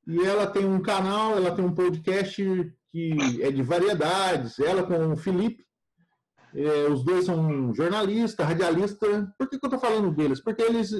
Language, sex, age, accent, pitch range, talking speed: Portuguese, male, 50-69, Brazilian, 160-195 Hz, 175 wpm